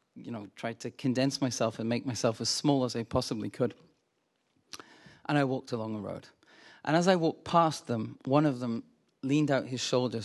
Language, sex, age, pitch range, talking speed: English, male, 40-59, 120-150 Hz, 200 wpm